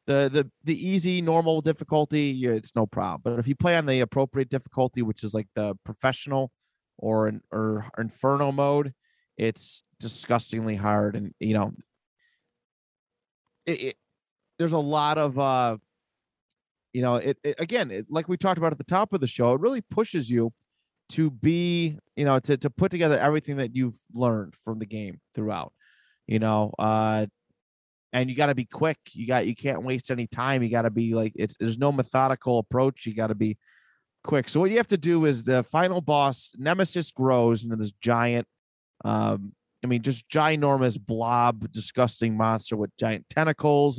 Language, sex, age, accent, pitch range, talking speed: English, male, 30-49, American, 110-150 Hz, 175 wpm